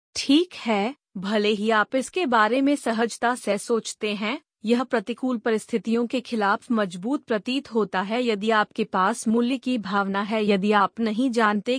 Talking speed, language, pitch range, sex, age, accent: 165 wpm, Hindi, 210-250 Hz, female, 30-49, native